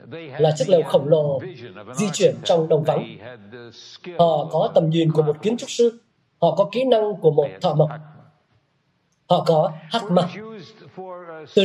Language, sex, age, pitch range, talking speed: Vietnamese, male, 20-39, 155-200 Hz, 165 wpm